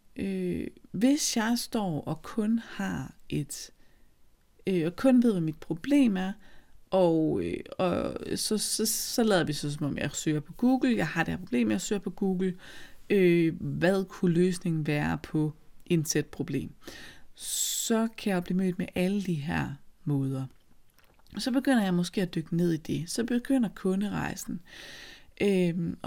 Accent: native